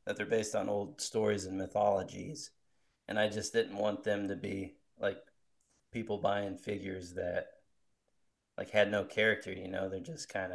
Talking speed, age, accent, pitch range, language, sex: 170 wpm, 30-49, American, 95-110 Hz, English, male